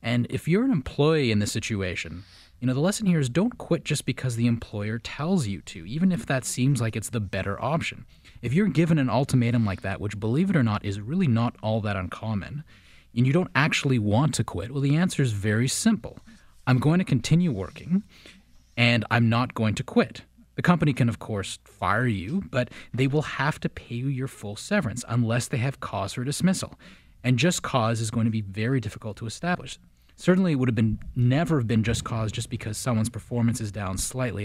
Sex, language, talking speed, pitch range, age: male, English, 220 wpm, 105-135 Hz, 30-49